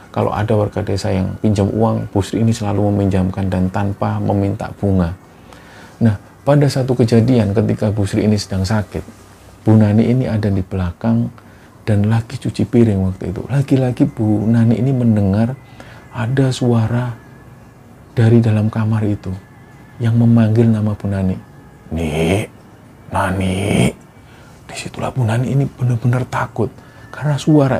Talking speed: 135 wpm